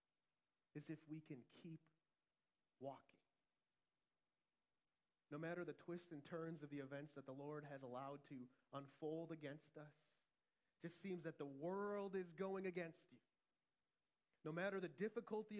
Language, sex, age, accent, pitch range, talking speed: English, male, 30-49, American, 130-190 Hz, 145 wpm